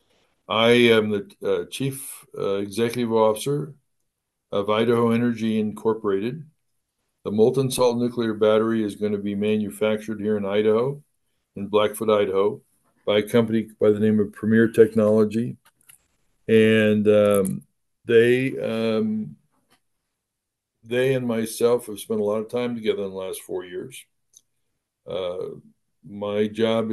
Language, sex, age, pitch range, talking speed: English, male, 60-79, 105-120 Hz, 130 wpm